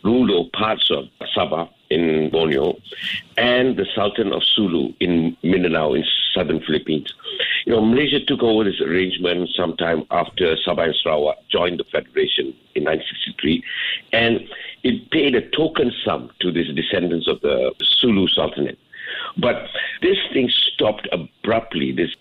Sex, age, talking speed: male, 60-79, 140 wpm